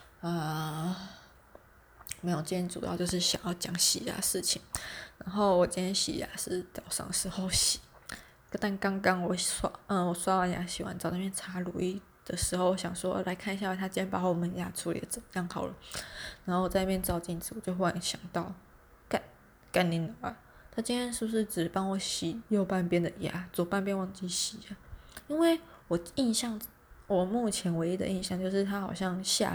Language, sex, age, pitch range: Chinese, female, 20-39, 175-205 Hz